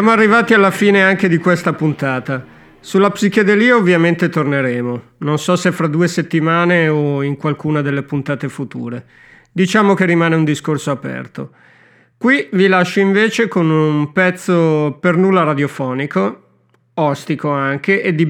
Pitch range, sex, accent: 145-180 Hz, male, native